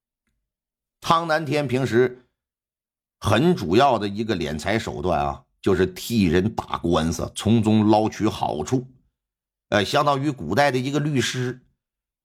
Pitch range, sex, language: 110-175 Hz, male, Chinese